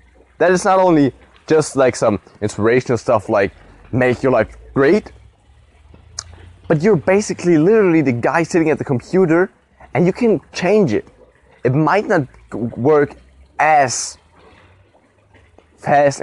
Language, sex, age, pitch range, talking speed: English, male, 20-39, 95-150 Hz, 130 wpm